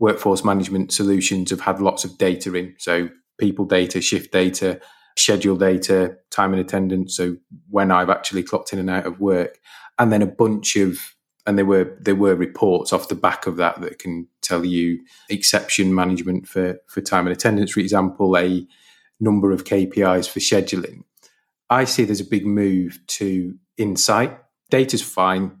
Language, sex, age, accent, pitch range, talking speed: English, male, 30-49, British, 95-100 Hz, 175 wpm